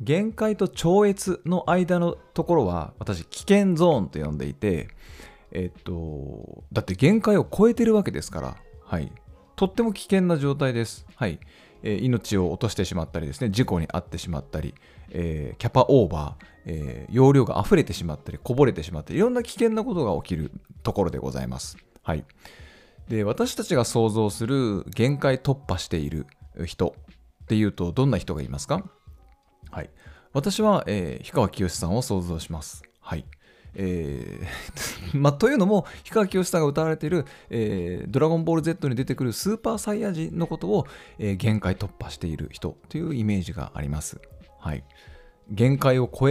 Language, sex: Japanese, male